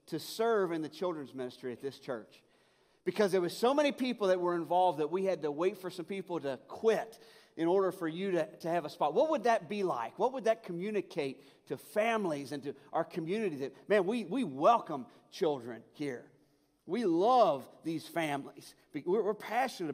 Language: English